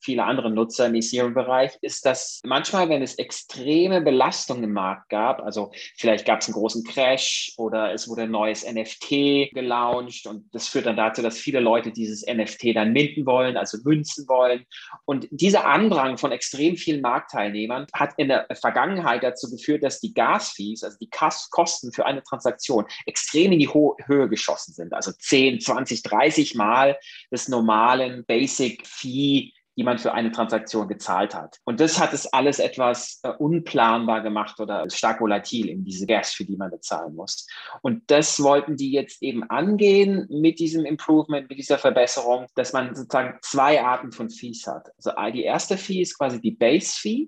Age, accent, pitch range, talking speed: 30-49, German, 110-145 Hz, 175 wpm